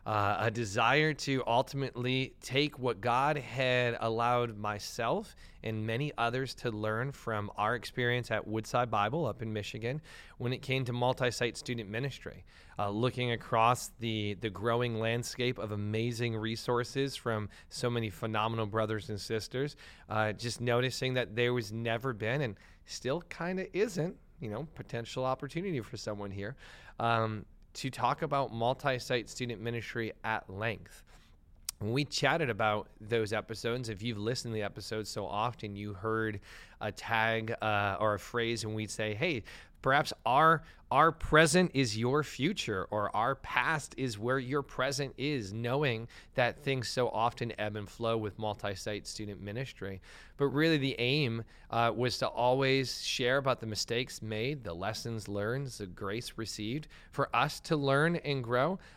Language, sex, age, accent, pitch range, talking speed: English, male, 30-49, American, 110-130 Hz, 160 wpm